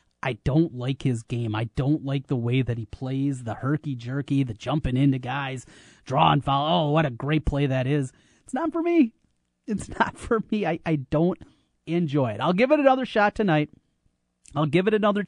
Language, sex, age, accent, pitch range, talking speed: English, male, 30-49, American, 135-160 Hz, 205 wpm